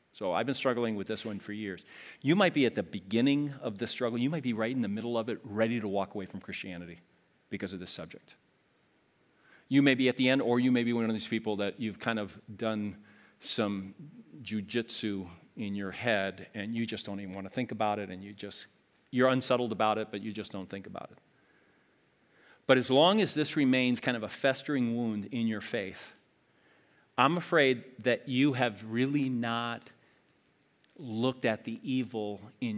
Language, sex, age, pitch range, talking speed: English, male, 40-59, 105-125 Hz, 205 wpm